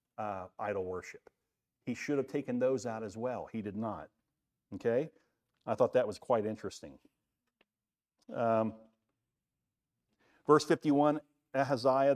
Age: 50-69